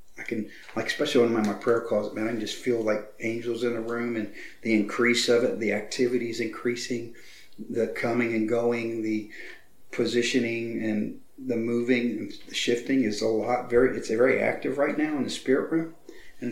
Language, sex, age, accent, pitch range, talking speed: English, male, 40-59, American, 115-150 Hz, 195 wpm